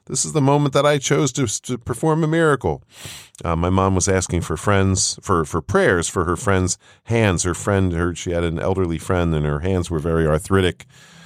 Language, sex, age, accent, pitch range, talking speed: English, male, 40-59, American, 80-100 Hz, 215 wpm